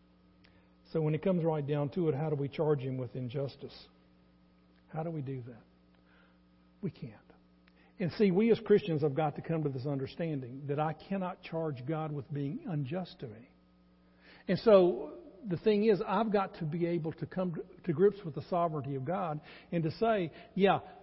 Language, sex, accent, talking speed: English, male, American, 190 wpm